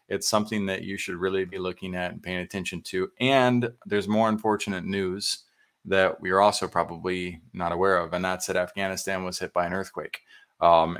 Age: 20-39